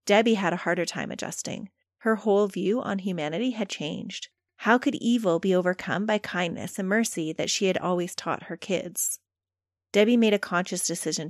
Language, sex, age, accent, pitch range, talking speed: English, female, 30-49, American, 175-220 Hz, 180 wpm